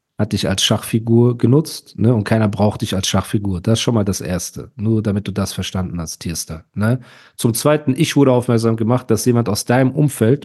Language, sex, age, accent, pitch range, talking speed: German, male, 40-59, German, 105-150 Hz, 210 wpm